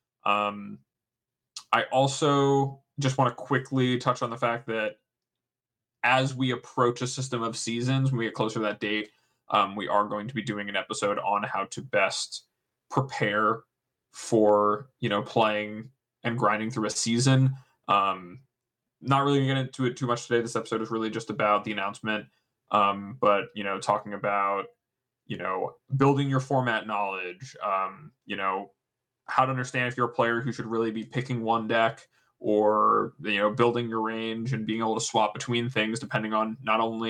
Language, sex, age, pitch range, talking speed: English, male, 20-39, 105-125 Hz, 180 wpm